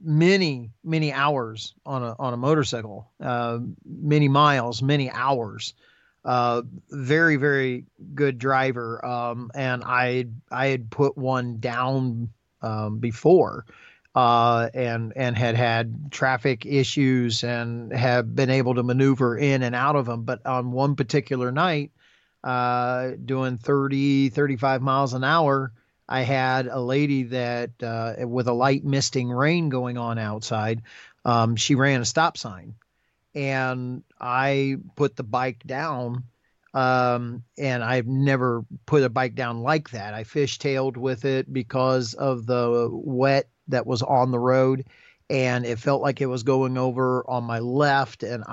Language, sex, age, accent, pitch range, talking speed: English, male, 40-59, American, 120-135 Hz, 145 wpm